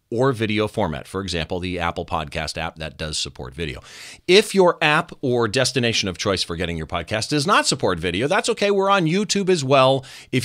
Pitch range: 95-140 Hz